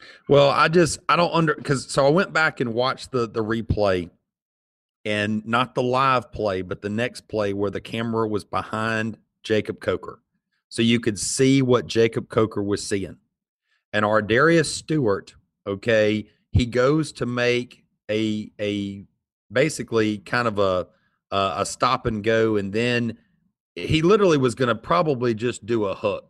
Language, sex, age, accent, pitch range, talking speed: English, male, 40-59, American, 105-125 Hz, 165 wpm